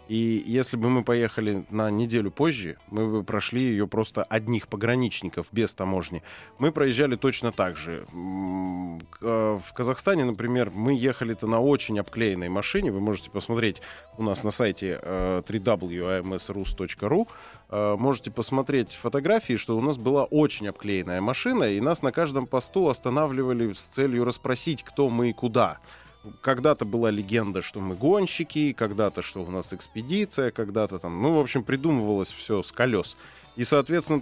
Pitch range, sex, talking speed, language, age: 100-130 Hz, male, 145 wpm, Russian, 20-39